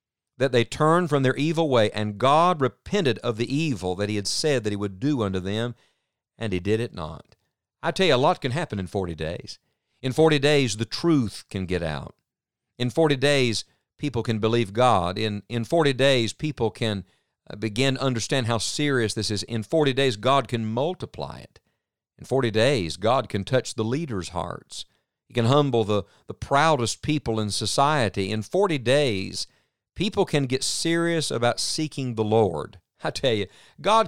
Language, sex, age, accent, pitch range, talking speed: English, male, 50-69, American, 100-140 Hz, 185 wpm